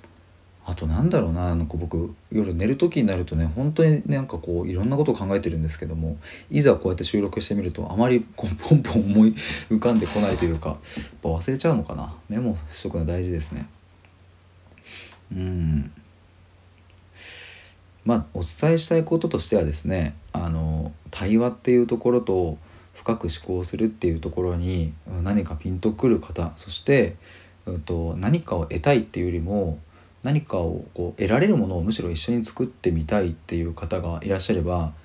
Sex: male